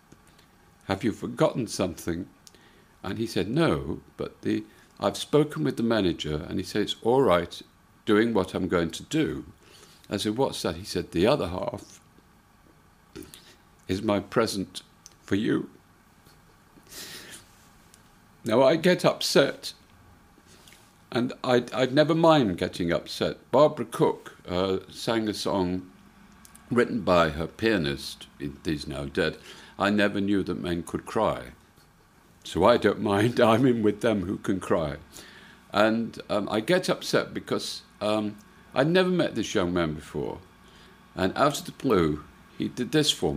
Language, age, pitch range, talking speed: English, 50-69, 90-120 Hz, 145 wpm